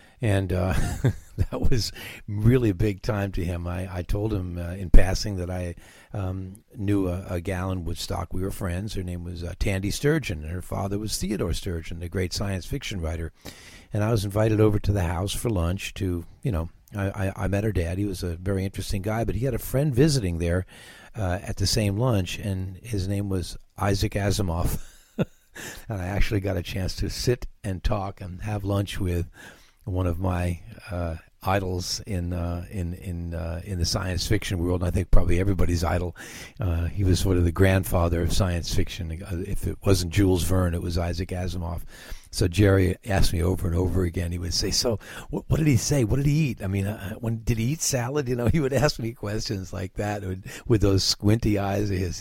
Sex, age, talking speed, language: male, 60-79, 215 wpm, English